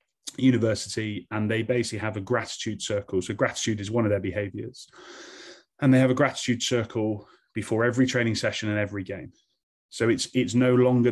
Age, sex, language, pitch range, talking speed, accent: 20-39, male, English, 105-120 Hz, 180 wpm, British